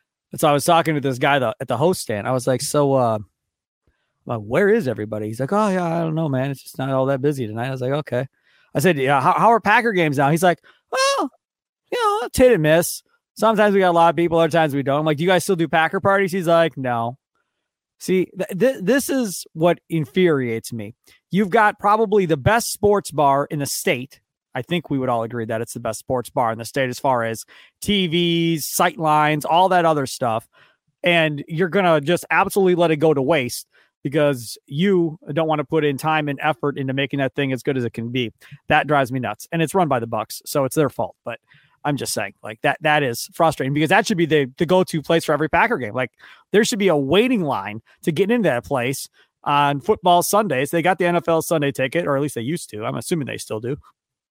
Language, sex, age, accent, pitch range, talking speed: English, male, 30-49, American, 135-180 Hz, 240 wpm